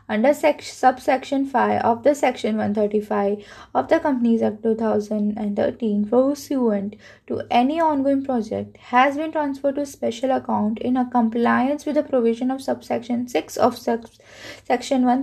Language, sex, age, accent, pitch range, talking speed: Hindi, female, 20-39, native, 220-275 Hz, 160 wpm